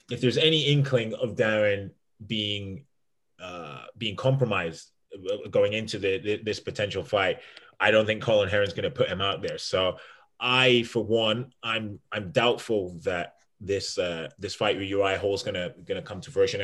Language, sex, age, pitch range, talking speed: English, male, 20-39, 100-130 Hz, 180 wpm